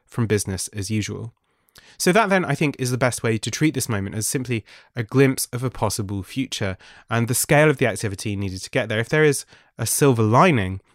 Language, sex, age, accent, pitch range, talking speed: English, male, 20-39, British, 110-135 Hz, 225 wpm